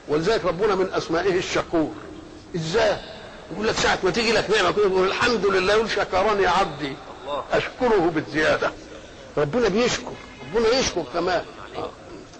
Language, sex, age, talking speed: Arabic, male, 50-69, 120 wpm